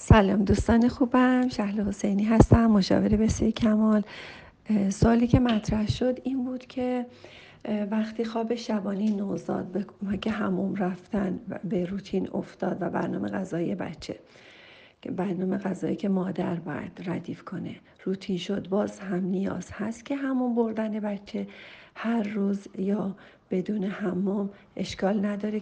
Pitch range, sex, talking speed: 195-230 Hz, female, 125 wpm